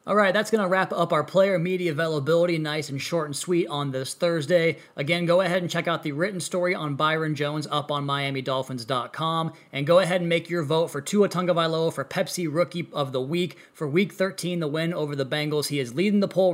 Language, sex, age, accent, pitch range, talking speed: English, male, 20-39, American, 150-180 Hz, 230 wpm